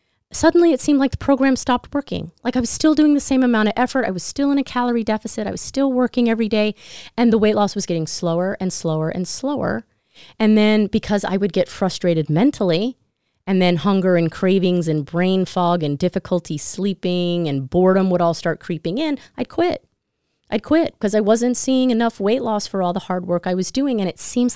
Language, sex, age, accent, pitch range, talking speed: English, female, 30-49, American, 170-235 Hz, 220 wpm